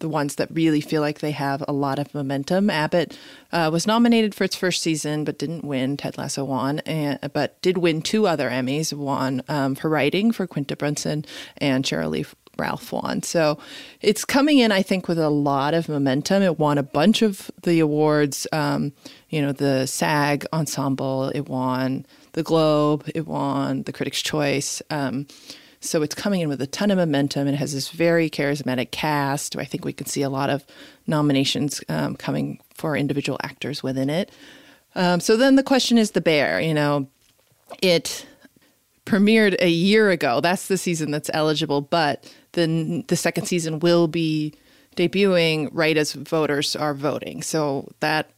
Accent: American